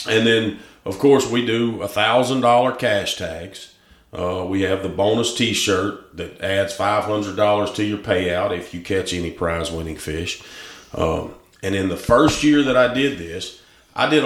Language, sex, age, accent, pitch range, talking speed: English, male, 40-59, American, 95-115 Hz, 165 wpm